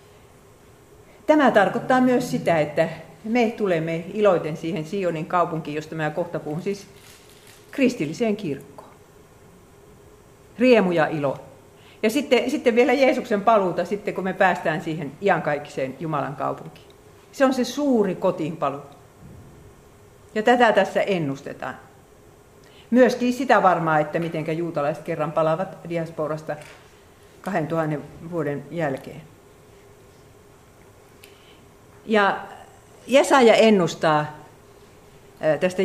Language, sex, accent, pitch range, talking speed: Finnish, female, native, 145-205 Hz, 100 wpm